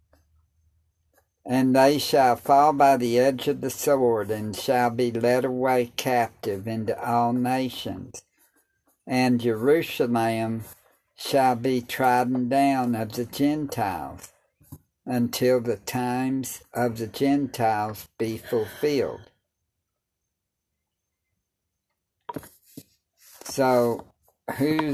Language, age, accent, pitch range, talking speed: English, 60-79, American, 105-130 Hz, 90 wpm